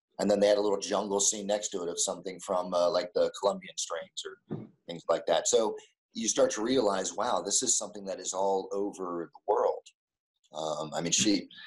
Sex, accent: male, American